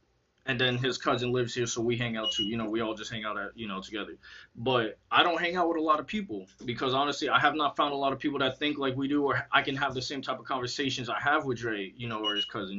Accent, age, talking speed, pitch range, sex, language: American, 20-39, 305 wpm, 115-145 Hz, male, English